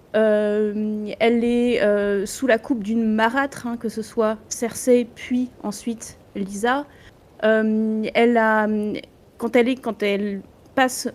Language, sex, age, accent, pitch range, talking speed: French, female, 30-49, French, 210-255 Hz, 140 wpm